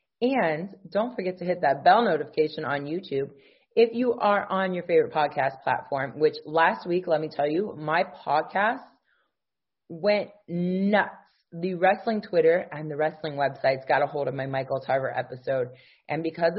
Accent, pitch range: American, 150-200 Hz